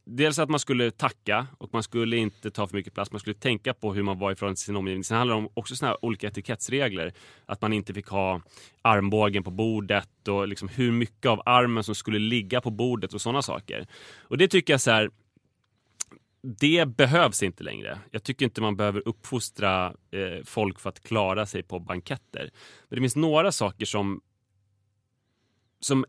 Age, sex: 20-39, male